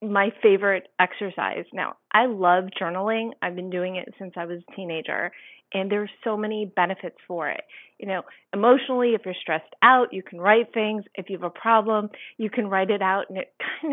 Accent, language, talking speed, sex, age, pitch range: American, English, 205 wpm, female, 30-49, 195-235 Hz